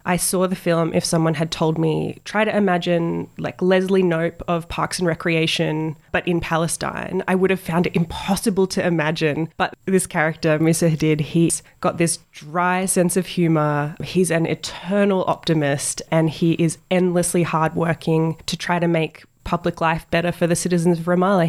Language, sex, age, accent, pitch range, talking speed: English, female, 20-39, Australian, 165-180 Hz, 175 wpm